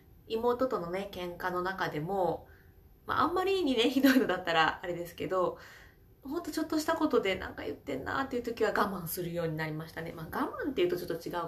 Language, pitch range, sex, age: Japanese, 180-295 Hz, female, 20-39